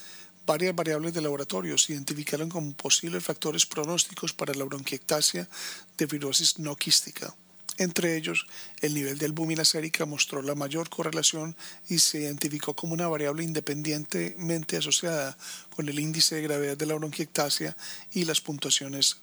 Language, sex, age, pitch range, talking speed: Spanish, male, 40-59, 145-165 Hz, 145 wpm